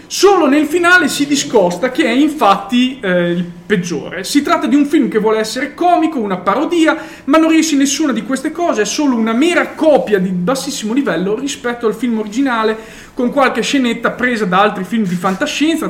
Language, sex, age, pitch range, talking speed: Italian, male, 20-39, 200-280 Hz, 195 wpm